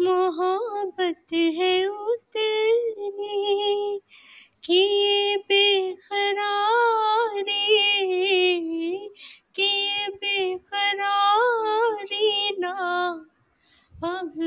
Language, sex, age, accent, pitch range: English, female, 20-39, Indian, 280-405 Hz